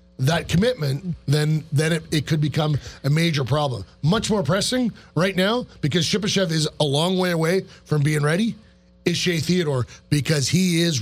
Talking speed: 175 wpm